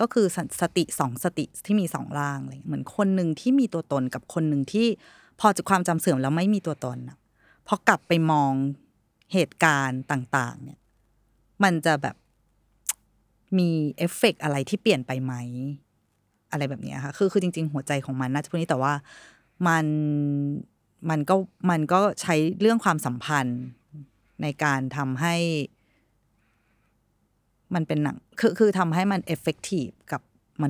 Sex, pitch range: female, 140-190 Hz